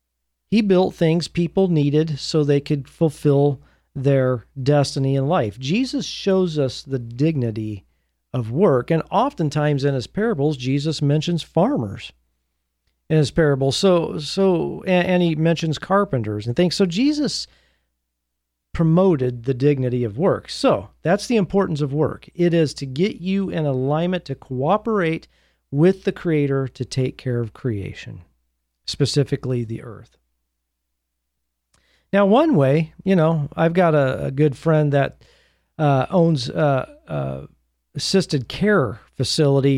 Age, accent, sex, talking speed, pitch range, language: 40-59, American, male, 140 wpm, 125-170 Hz, English